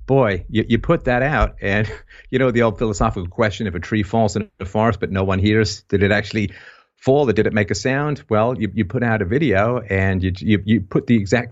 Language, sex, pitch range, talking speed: English, male, 95-110 Hz, 250 wpm